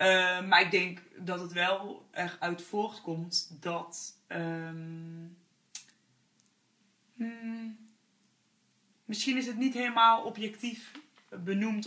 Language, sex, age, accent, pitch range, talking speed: Dutch, female, 20-39, Dutch, 180-210 Hz, 95 wpm